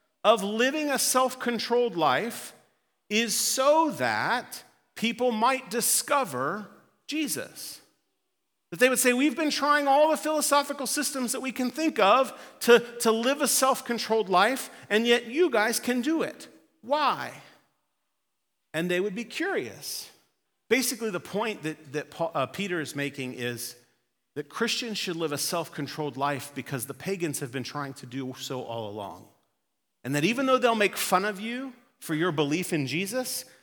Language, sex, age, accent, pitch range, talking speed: English, male, 40-59, American, 145-245 Hz, 160 wpm